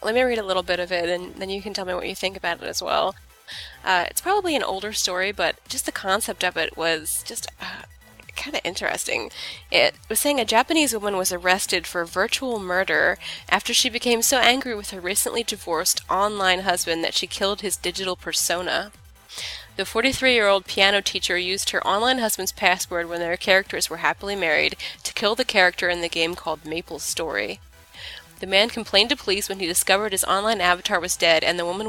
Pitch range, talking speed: 175-215 Hz, 200 wpm